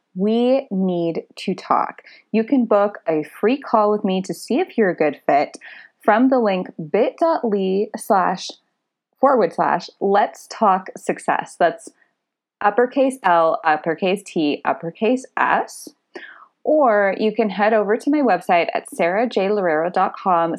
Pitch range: 180-260 Hz